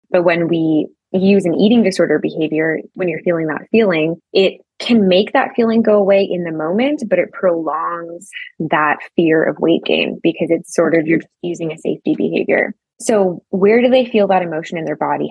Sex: female